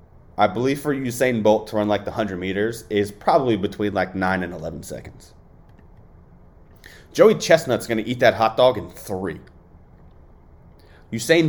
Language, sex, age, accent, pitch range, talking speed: English, male, 30-49, American, 85-120 Hz, 150 wpm